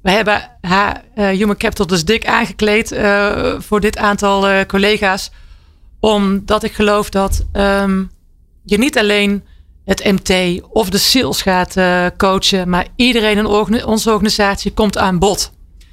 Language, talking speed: Dutch, 135 wpm